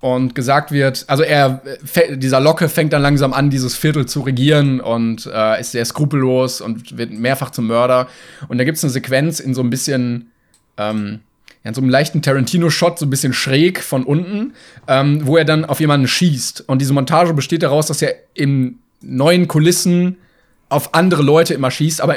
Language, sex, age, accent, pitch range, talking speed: German, male, 30-49, German, 125-155 Hz, 190 wpm